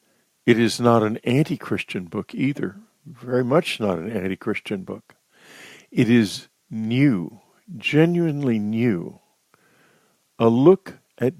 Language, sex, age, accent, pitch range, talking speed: English, male, 50-69, American, 110-150 Hz, 110 wpm